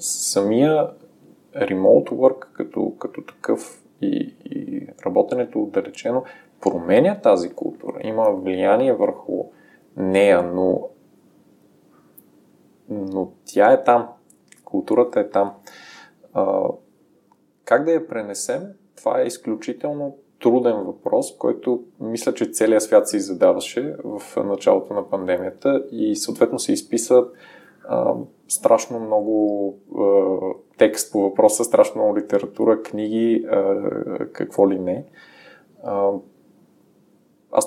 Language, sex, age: Bulgarian, male, 20-39